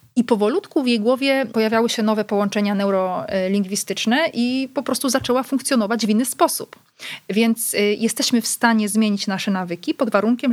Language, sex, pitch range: Polish, female, 205-245 Hz